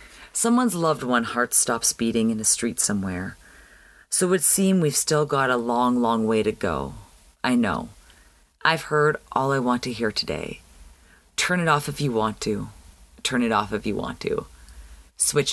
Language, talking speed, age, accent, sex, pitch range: English, 185 wpm, 30-49, American, female, 110-150 Hz